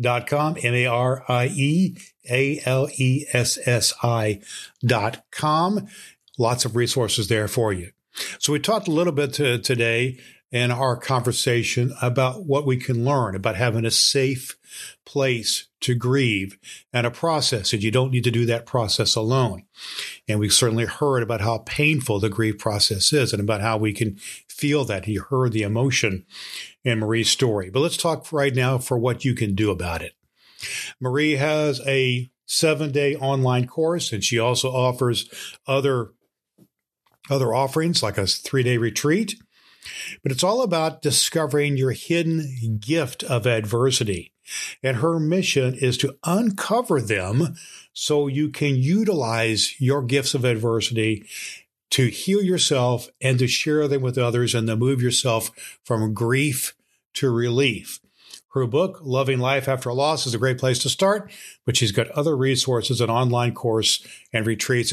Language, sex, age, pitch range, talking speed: English, male, 50-69, 115-145 Hz, 150 wpm